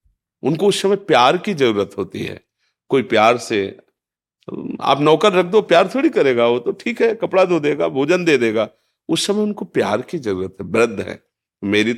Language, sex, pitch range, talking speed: Hindi, male, 105-140 Hz, 190 wpm